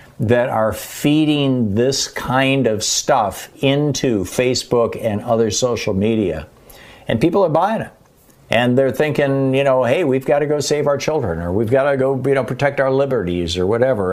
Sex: male